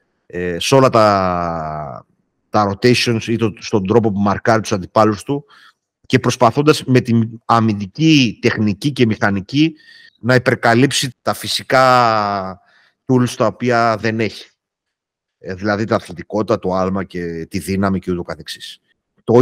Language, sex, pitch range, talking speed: Greek, male, 105-130 Hz, 135 wpm